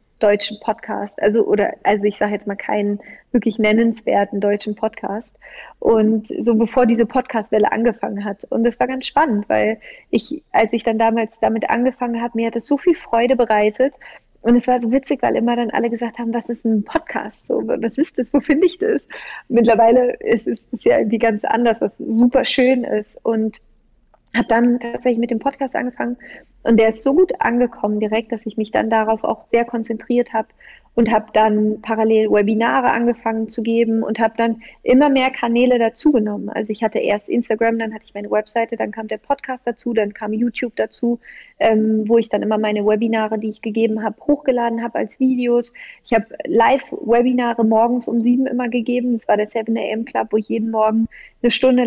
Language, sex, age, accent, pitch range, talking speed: German, female, 30-49, German, 220-245 Hz, 195 wpm